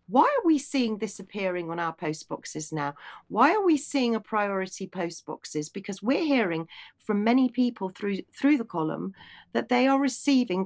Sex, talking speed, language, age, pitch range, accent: female, 185 wpm, English, 40-59, 175-235 Hz, British